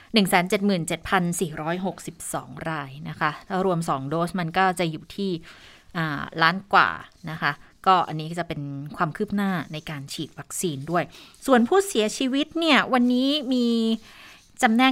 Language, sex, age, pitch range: Thai, female, 20-39, 160-210 Hz